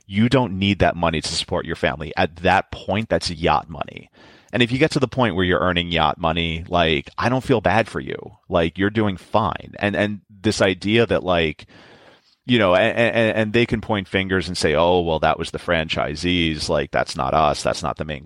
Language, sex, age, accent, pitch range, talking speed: English, male, 30-49, American, 80-105 Hz, 225 wpm